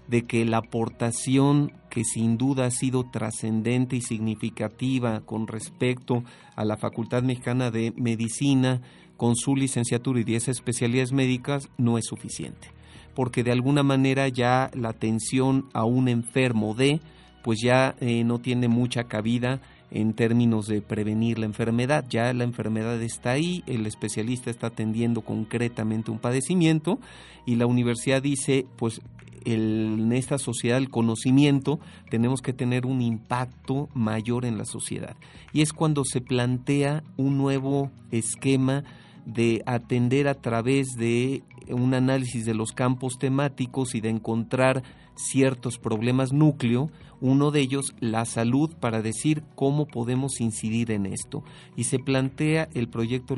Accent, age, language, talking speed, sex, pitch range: Mexican, 40-59, Spanish, 145 wpm, male, 115-135 Hz